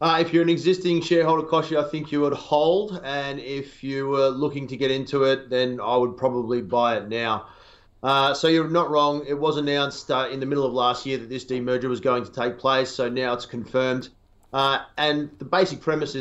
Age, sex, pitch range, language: 30-49, male, 120-140 Hz, English